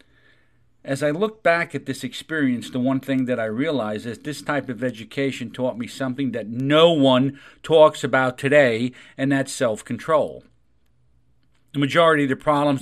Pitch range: 125-155 Hz